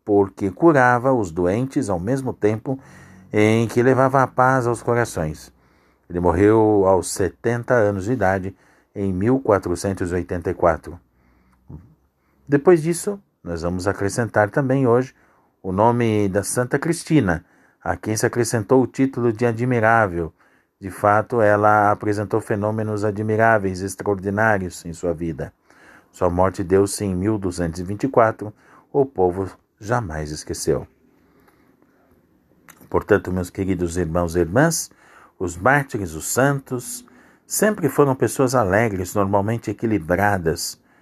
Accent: Brazilian